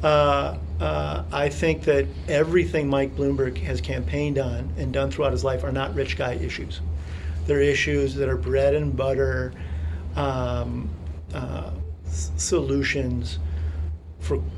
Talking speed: 135 wpm